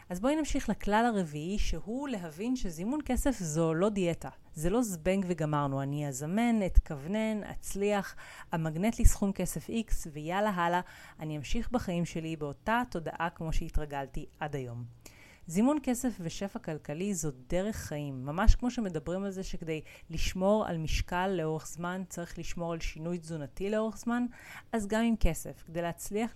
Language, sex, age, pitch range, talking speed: Hebrew, female, 30-49, 160-215 Hz, 155 wpm